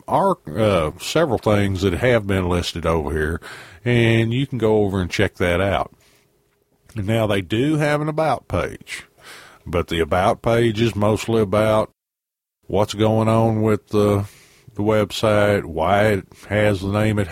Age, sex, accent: 50-69, male, American